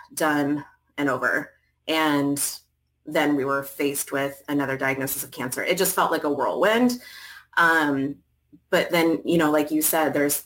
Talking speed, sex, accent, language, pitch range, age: 160 wpm, female, American, English, 145-170 Hz, 30-49